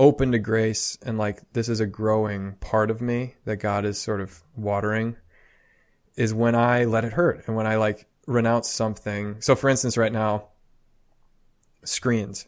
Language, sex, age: English, male, 20-39